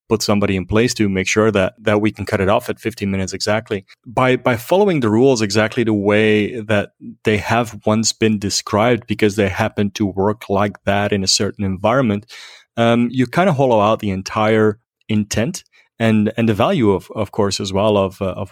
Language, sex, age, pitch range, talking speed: English, male, 30-49, 105-125 Hz, 205 wpm